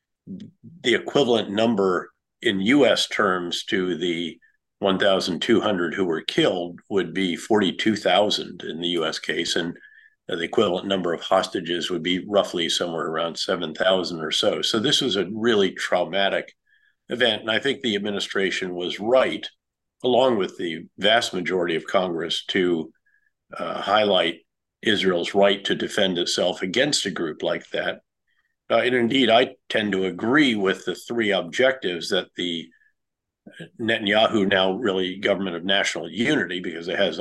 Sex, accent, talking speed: male, American, 145 wpm